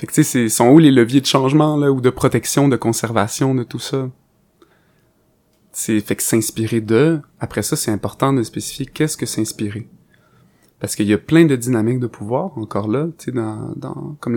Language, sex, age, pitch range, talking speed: French, male, 30-49, 115-155 Hz, 195 wpm